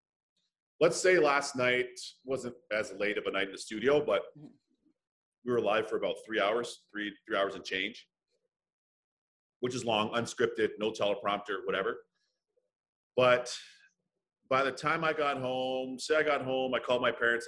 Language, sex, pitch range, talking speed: English, male, 115-135 Hz, 165 wpm